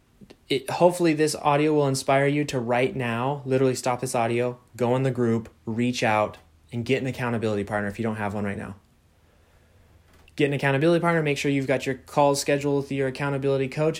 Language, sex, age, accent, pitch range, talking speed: English, male, 20-39, American, 90-150 Hz, 195 wpm